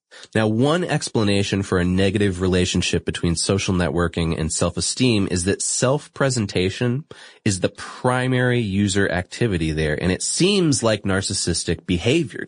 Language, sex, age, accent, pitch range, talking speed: English, male, 20-39, American, 90-125 Hz, 130 wpm